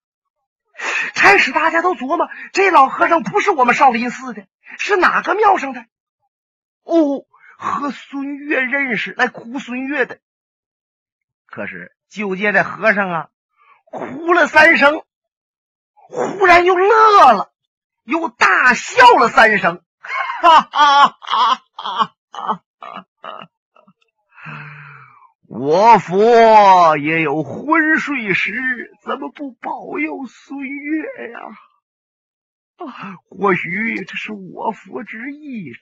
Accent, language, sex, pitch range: native, Chinese, male, 205-330 Hz